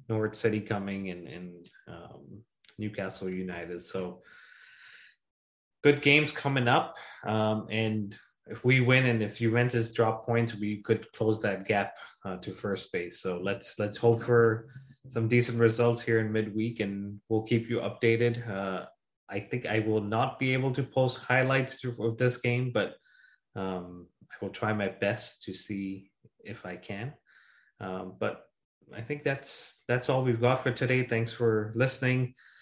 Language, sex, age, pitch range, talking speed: English, male, 20-39, 105-125 Hz, 160 wpm